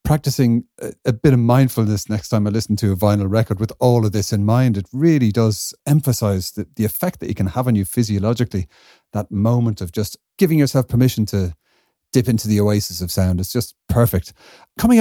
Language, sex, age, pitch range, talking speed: English, male, 40-59, 105-125 Hz, 210 wpm